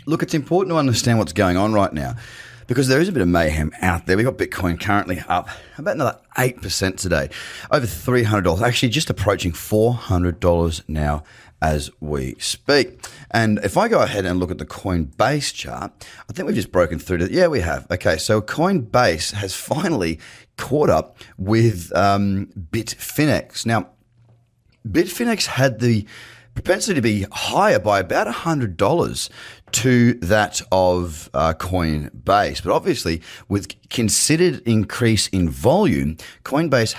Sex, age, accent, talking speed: male, 30-49, Australian, 150 wpm